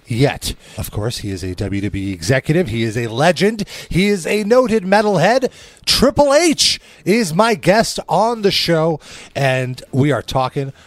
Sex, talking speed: male, 160 wpm